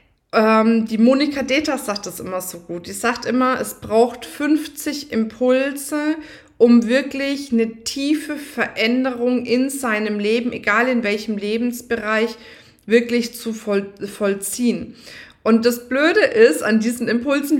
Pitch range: 220-275 Hz